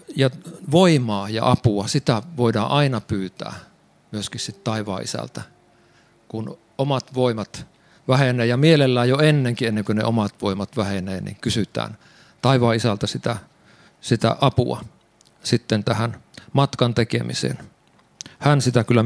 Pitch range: 110-140 Hz